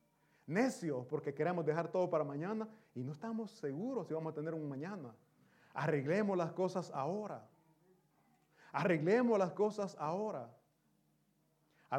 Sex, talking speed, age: male, 130 wpm, 30-49